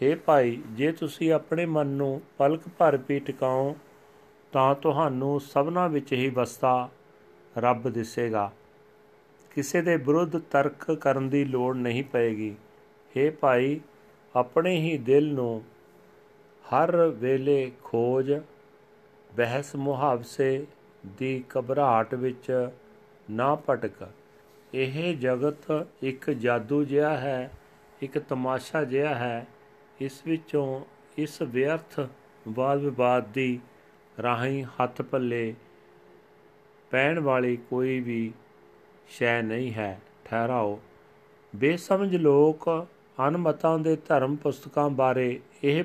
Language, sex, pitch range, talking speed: Punjabi, male, 125-150 Hz, 105 wpm